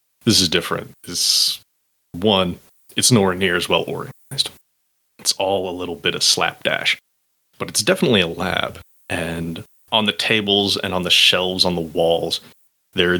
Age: 30-49